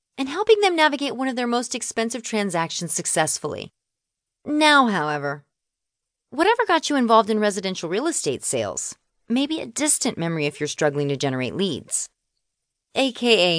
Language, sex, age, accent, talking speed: English, female, 30-49, American, 150 wpm